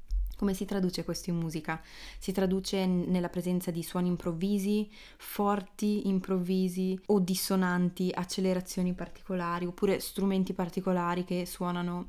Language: Italian